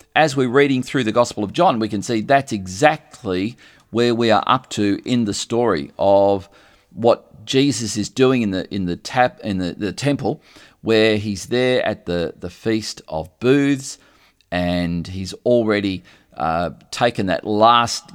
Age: 40-59